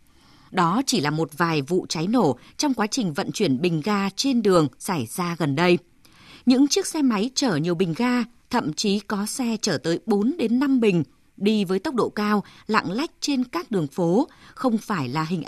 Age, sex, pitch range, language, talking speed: 20-39, female, 180-255 Hz, Vietnamese, 210 wpm